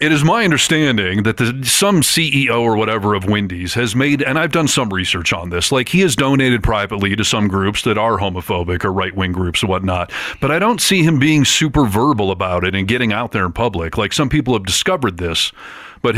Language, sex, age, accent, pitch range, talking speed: English, male, 40-59, American, 95-145 Hz, 225 wpm